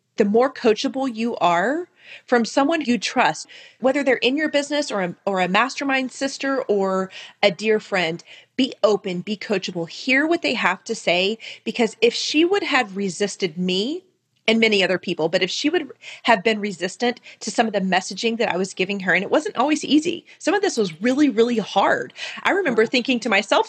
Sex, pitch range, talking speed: female, 190-255 Hz, 200 wpm